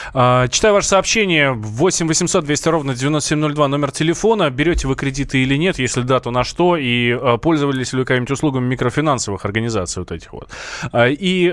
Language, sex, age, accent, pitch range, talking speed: Russian, male, 20-39, native, 105-145 Hz, 160 wpm